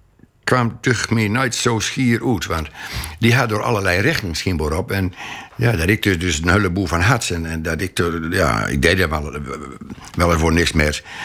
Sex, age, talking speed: male, 60-79, 205 wpm